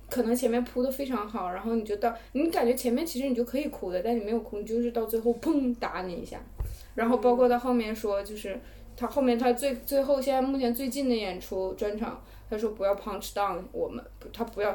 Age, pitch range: 20-39, 200-245 Hz